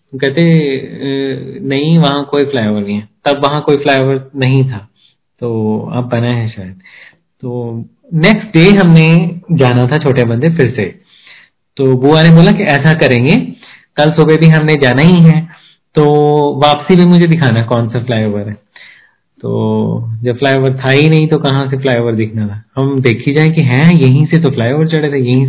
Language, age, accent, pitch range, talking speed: Hindi, 20-39, native, 125-150 Hz, 180 wpm